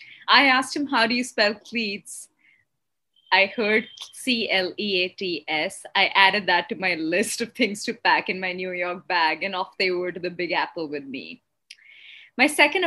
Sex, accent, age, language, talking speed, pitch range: female, Indian, 20-39, English, 175 wpm, 180-215 Hz